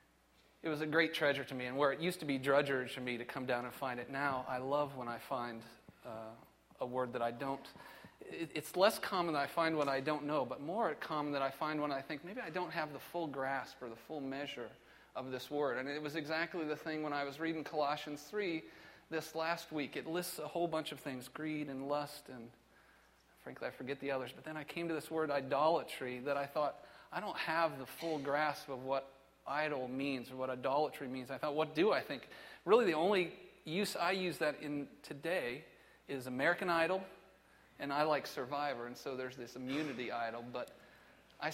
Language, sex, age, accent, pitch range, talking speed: English, male, 40-59, American, 130-155 Hz, 220 wpm